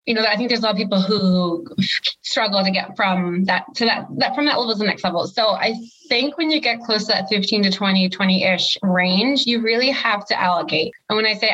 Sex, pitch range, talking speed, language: female, 190-235 Hz, 255 wpm, English